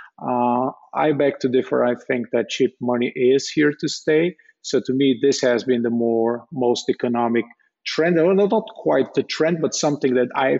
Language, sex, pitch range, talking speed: English, male, 120-140 Hz, 200 wpm